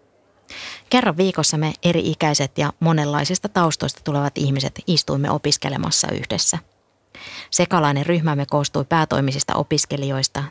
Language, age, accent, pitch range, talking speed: Finnish, 30-49, native, 135-160 Hz, 95 wpm